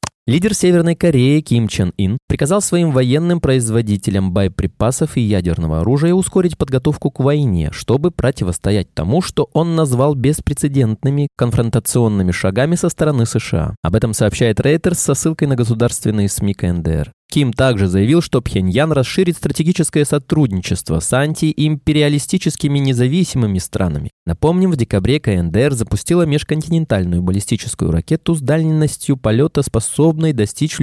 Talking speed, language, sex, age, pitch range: 125 wpm, Russian, male, 20-39, 105-155 Hz